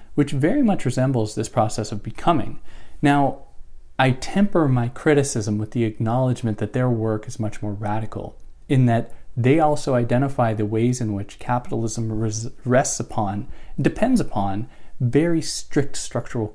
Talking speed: 150 wpm